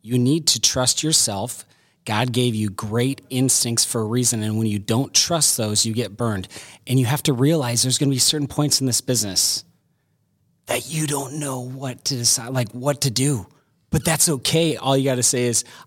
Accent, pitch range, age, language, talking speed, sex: American, 120-150 Hz, 30-49, English, 210 wpm, male